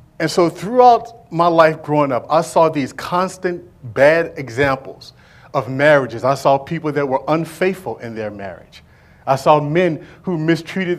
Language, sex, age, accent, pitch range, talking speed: English, male, 40-59, American, 130-170 Hz, 160 wpm